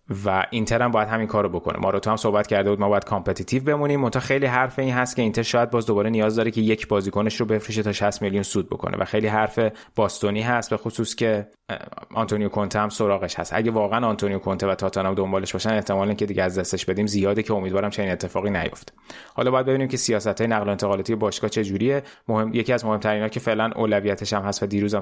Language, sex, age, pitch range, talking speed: Persian, male, 20-39, 100-115 Hz, 230 wpm